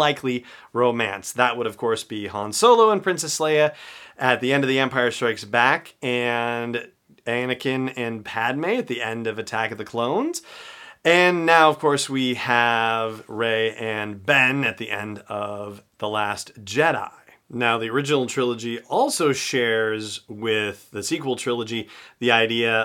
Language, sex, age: English, male, 40-59